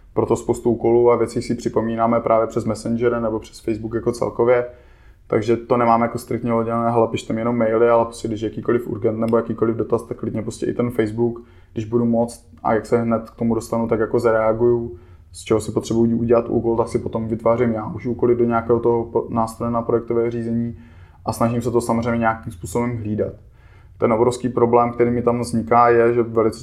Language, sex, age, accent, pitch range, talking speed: Czech, male, 20-39, native, 115-120 Hz, 205 wpm